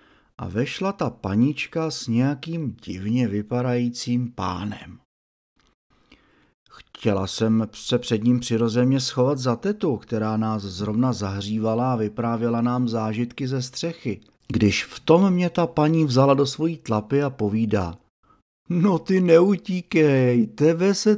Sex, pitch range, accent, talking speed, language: male, 110-155 Hz, native, 130 wpm, Czech